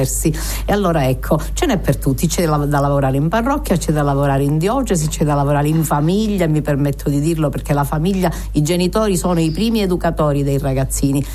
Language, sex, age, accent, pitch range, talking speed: Italian, female, 50-69, native, 145-185 Hz, 195 wpm